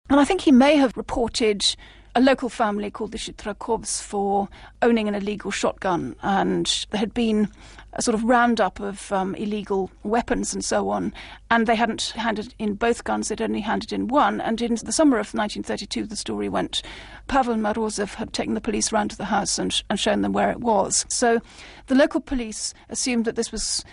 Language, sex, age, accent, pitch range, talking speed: English, female, 40-59, British, 205-235 Hz, 200 wpm